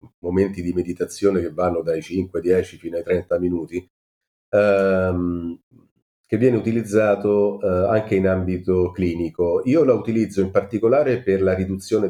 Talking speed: 145 wpm